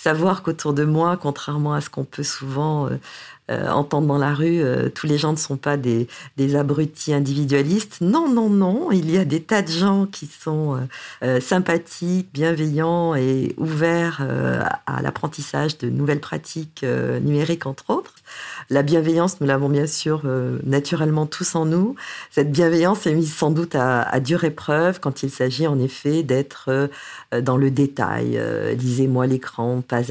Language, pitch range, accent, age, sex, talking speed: French, 135-165 Hz, French, 50-69, female, 175 wpm